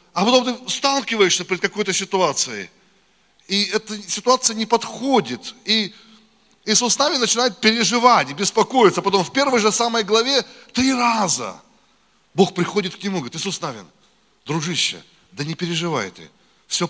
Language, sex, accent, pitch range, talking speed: Russian, male, native, 170-220 Hz, 140 wpm